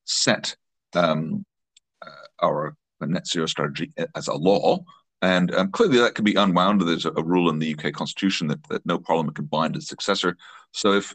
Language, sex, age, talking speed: English, male, 40-59, 190 wpm